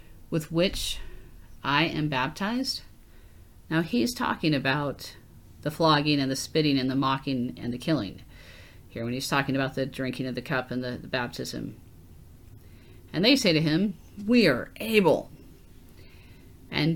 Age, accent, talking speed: 40-59, American, 150 wpm